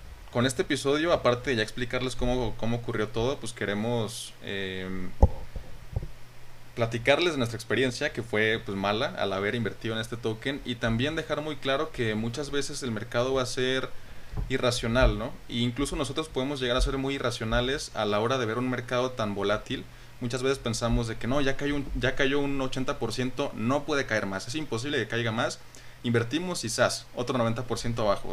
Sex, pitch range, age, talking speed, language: male, 115-135 Hz, 20-39, 190 wpm, Spanish